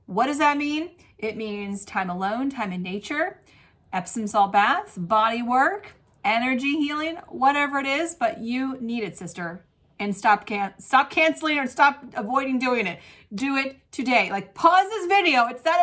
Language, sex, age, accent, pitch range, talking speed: English, female, 30-49, American, 215-300 Hz, 170 wpm